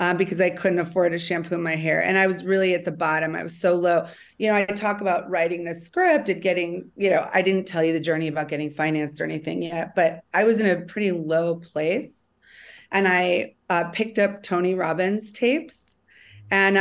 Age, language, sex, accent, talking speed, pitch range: 30-49, English, female, American, 220 wpm, 175-205 Hz